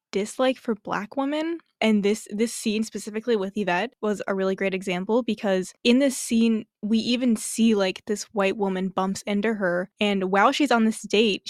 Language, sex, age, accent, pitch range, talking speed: English, female, 10-29, American, 200-235 Hz, 190 wpm